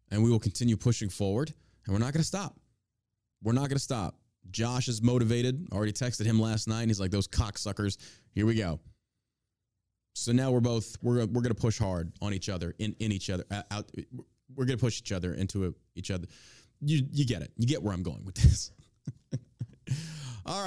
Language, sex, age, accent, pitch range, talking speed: English, male, 20-39, American, 100-125 Hz, 210 wpm